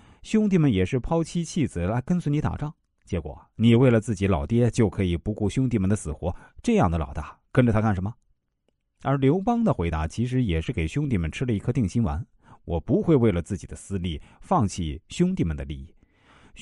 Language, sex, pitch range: Chinese, male, 85-130 Hz